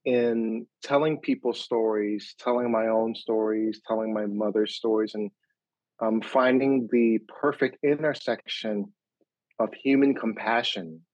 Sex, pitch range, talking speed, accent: male, 110-125 Hz, 115 wpm, American